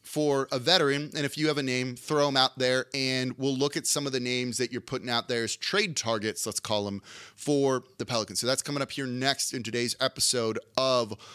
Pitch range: 120-150 Hz